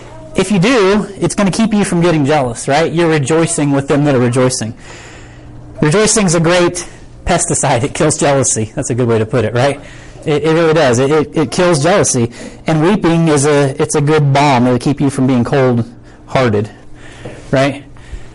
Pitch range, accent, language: 120-155 Hz, American, English